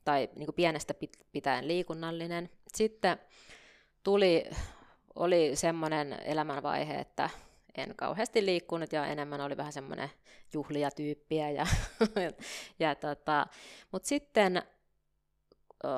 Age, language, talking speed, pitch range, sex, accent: 20-39, Finnish, 105 wpm, 150-205 Hz, female, native